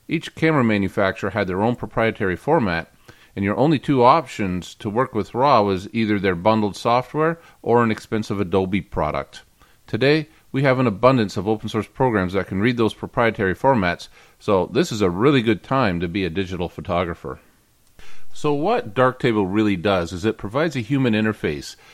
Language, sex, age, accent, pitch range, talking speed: English, male, 40-59, American, 100-130 Hz, 180 wpm